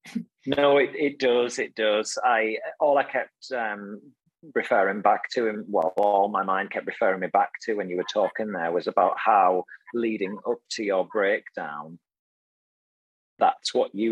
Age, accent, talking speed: 30-49, British, 170 wpm